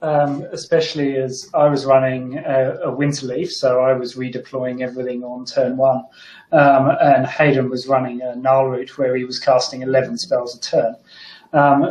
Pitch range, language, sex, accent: 125-140 Hz, English, male, British